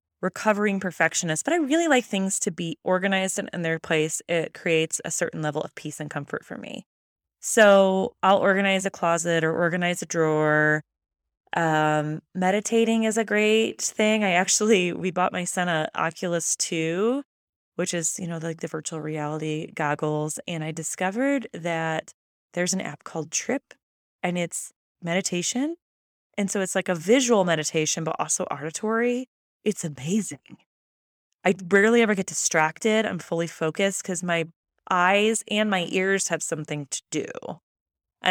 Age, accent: 20-39, American